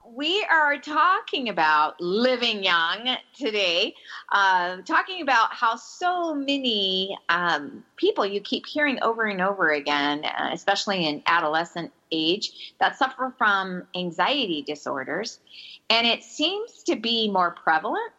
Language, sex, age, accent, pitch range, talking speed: English, female, 40-59, American, 175-240 Hz, 125 wpm